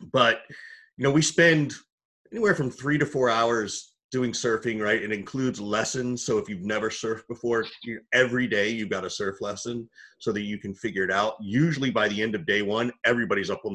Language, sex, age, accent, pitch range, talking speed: English, male, 30-49, American, 105-130 Hz, 205 wpm